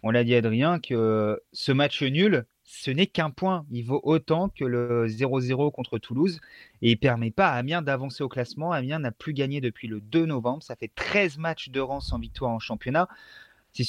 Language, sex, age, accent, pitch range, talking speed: French, male, 30-49, French, 120-155 Hz, 215 wpm